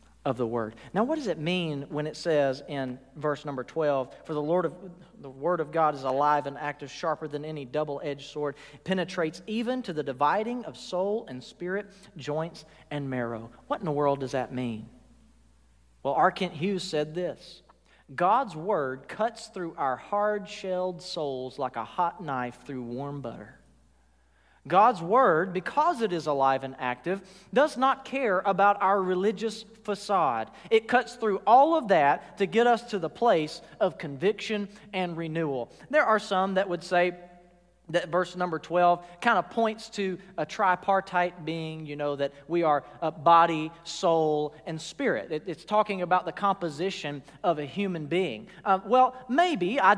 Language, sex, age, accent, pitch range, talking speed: English, male, 40-59, American, 145-210 Hz, 175 wpm